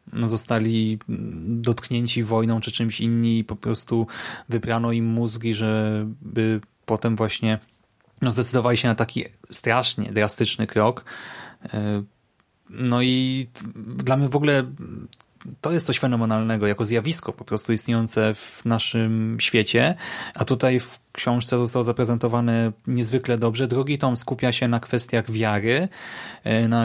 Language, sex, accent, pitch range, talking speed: Polish, male, native, 115-135 Hz, 130 wpm